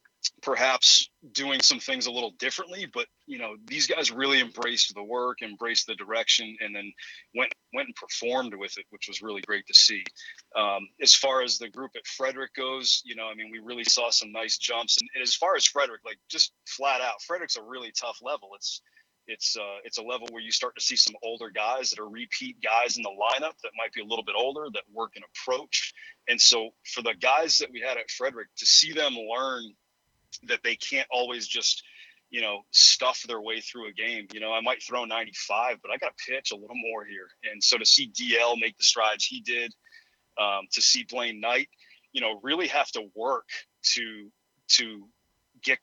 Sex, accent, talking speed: male, American, 215 wpm